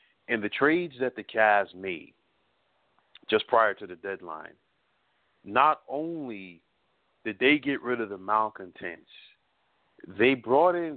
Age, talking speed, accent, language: 40-59, 130 wpm, American, English